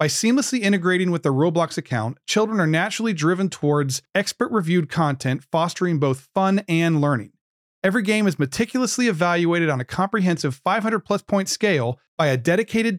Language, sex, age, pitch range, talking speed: English, male, 40-59, 150-200 Hz, 155 wpm